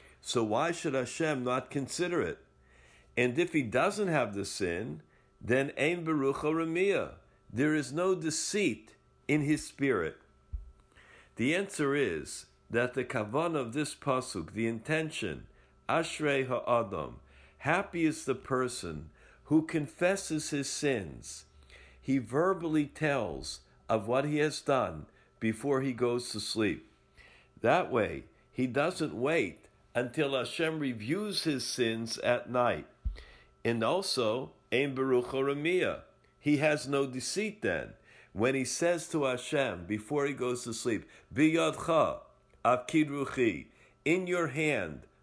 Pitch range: 120-155 Hz